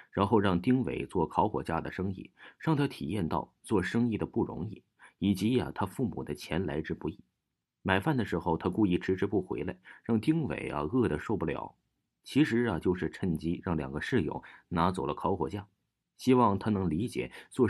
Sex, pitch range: male, 80-115 Hz